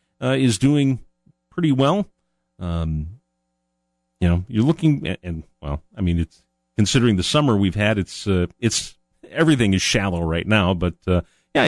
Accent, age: American, 40-59